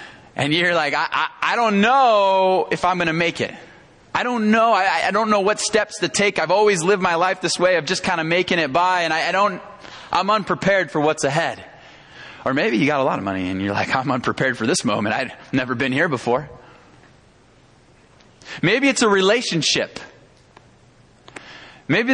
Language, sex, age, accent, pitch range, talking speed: English, male, 20-39, American, 155-210 Hz, 200 wpm